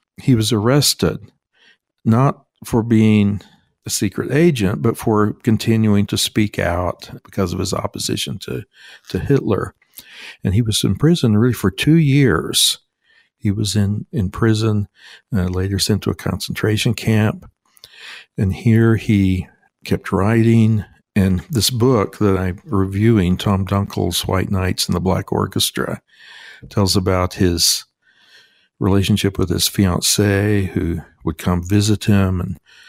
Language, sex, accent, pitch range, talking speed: English, male, American, 95-115 Hz, 135 wpm